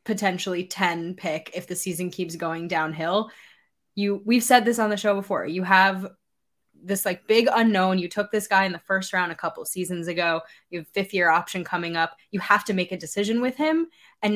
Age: 10-29